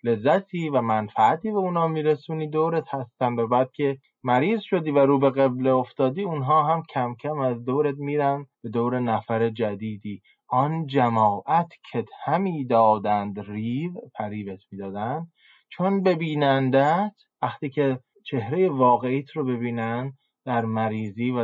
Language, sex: Persian, male